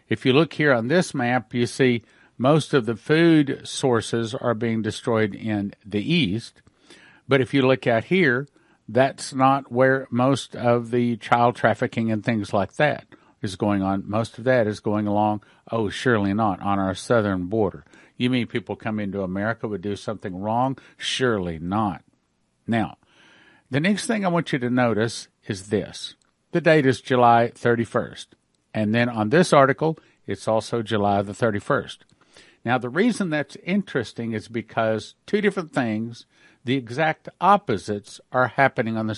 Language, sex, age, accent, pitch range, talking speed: English, male, 50-69, American, 110-140 Hz, 165 wpm